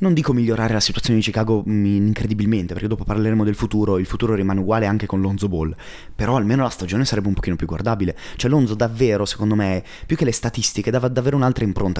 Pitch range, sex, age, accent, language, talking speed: 100-130 Hz, male, 20-39, native, Italian, 215 wpm